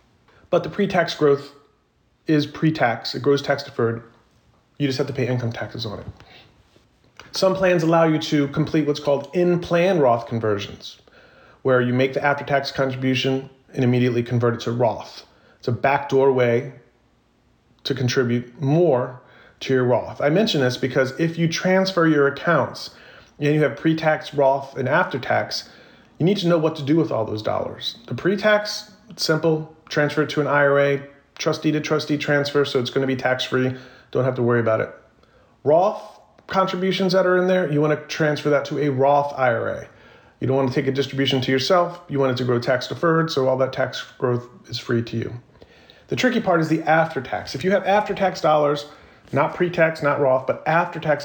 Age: 30-49